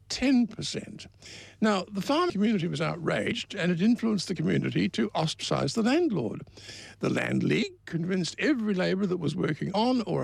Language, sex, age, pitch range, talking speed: English, male, 60-79, 155-215 Hz, 160 wpm